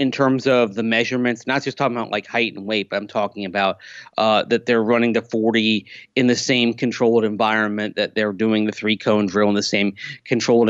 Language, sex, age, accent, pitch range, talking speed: English, male, 30-49, American, 110-145 Hz, 220 wpm